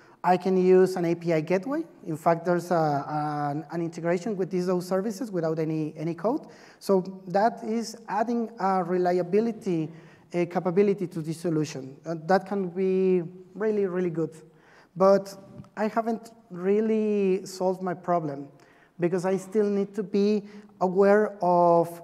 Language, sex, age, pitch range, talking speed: English, male, 30-49, 170-200 Hz, 145 wpm